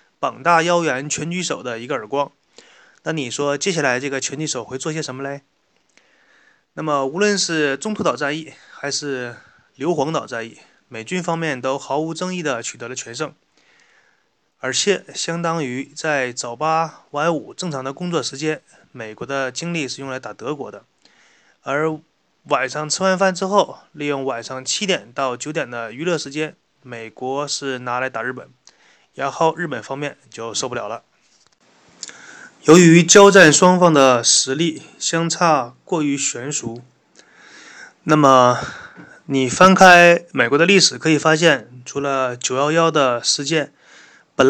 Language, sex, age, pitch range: Chinese, male, 20-39, 135-170 Hz